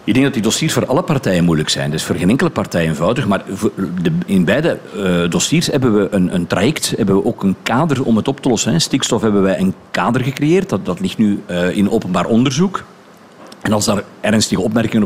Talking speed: 225 wpm